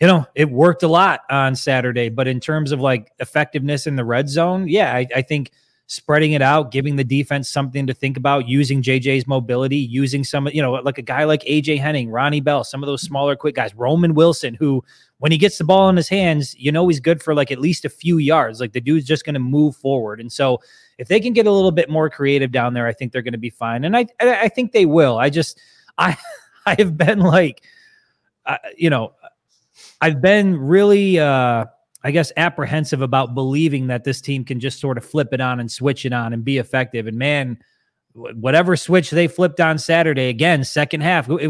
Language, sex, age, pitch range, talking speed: English, male, 20-39, 130-165 Hz, 225 wpm